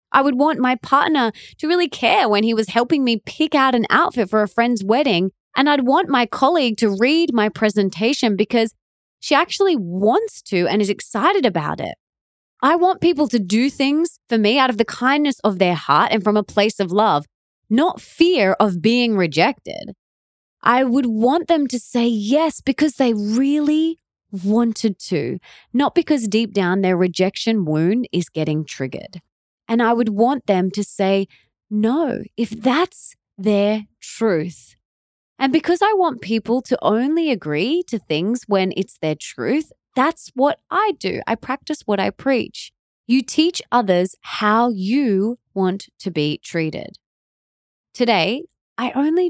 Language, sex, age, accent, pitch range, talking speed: English, female, 20-39, Australian, 205-285 Hz, 165 wpm